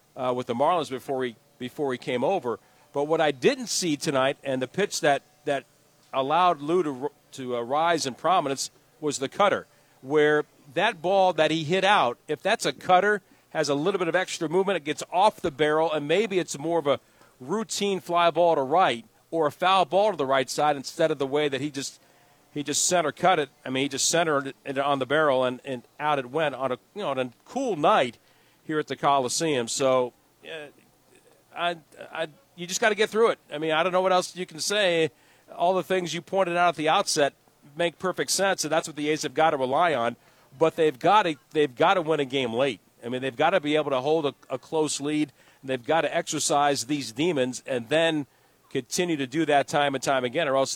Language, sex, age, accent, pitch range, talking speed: English, male, 50-69, American, 135-170 Hz, 230 wpm